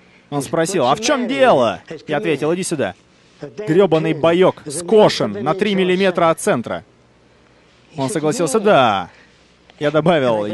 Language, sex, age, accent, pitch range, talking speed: Russian, male, 30-49, native, 155-200 Hz, 130 wpm